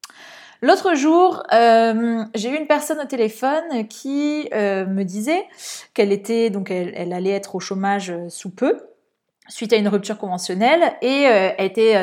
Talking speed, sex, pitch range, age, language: 165 wpm, female, 205-260 Hz, 20-39, French